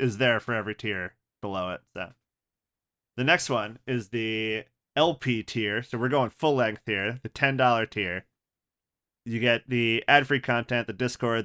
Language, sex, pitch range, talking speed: English, male, 110-130 Hz, 170 wpm